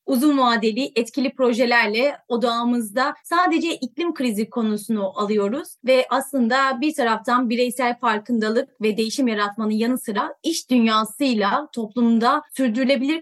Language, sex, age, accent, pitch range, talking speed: Turkish, female, 30-49, native, 230-290 Hz, 115 wpm